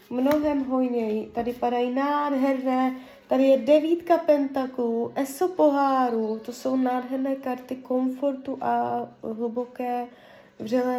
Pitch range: 225-260 Hz